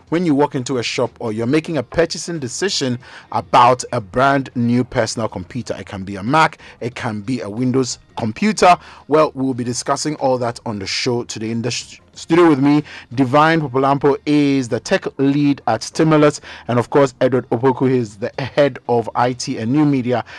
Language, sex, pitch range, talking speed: English, male, 115-145 Hz, 190 wpm